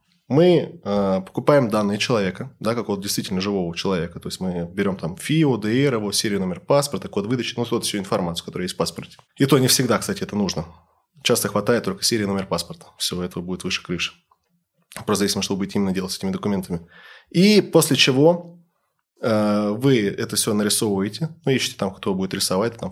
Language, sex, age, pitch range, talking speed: Russian, male, 20-39, 100-130 Hz, 190 wpm